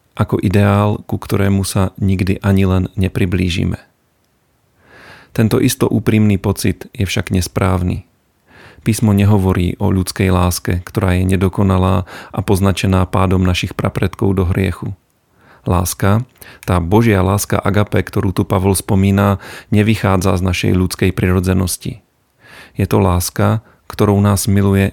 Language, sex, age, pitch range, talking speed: Slovak, male, 40-59, 95-105 Hz, 125 wpm